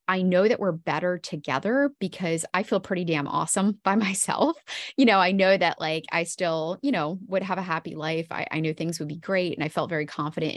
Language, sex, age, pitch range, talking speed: English, female, 20-39, 160-200 Hz, 235 wpm